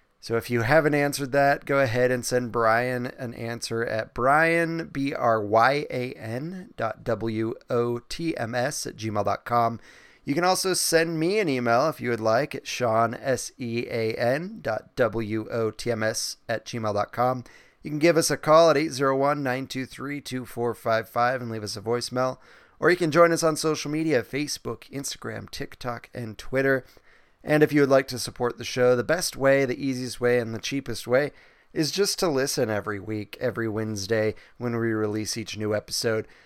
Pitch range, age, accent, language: 115-145 Hz, 30-49, American, English